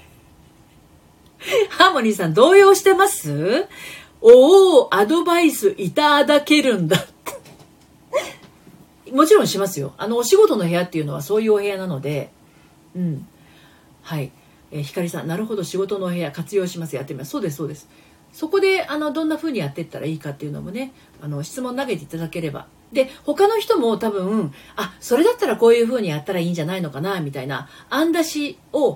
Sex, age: female, 40-59